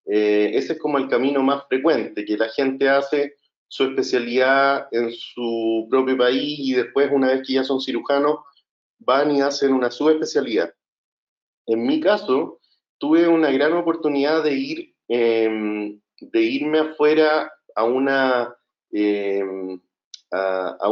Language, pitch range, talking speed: English, 115-150 Hz, 140 wpm